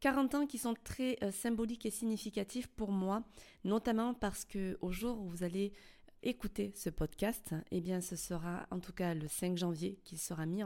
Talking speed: 190 wpm